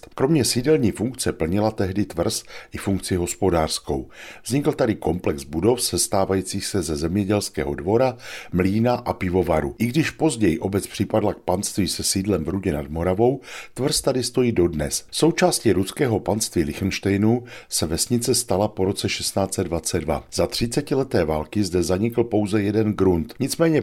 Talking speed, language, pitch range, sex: 145 wpm, Czech, 90-115 Hz, male